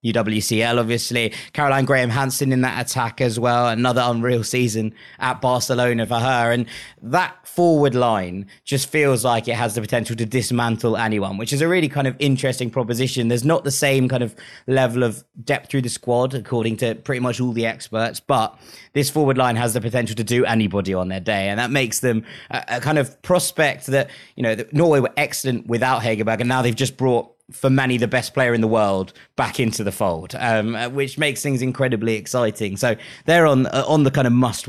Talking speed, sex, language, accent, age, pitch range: 210 wpm, male, English, British, 20-39, 115-130 Hz